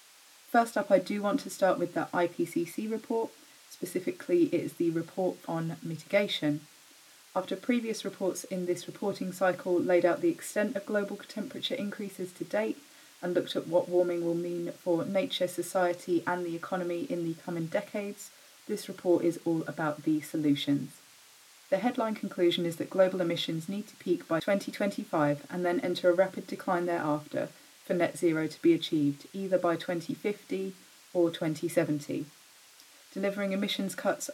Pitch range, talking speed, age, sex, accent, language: 170-205 Hz, 160 wpm, 30-49, female, British, English